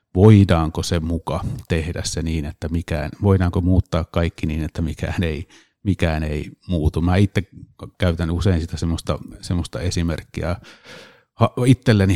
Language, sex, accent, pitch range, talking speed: Finnish, male, native, 80-95 Hz, 135 wpm